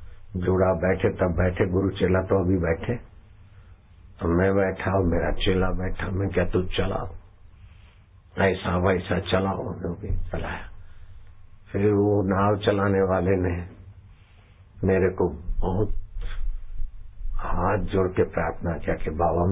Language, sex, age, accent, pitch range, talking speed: Hindi, male, 60-79, native, 90-100 Hz, 130 wpm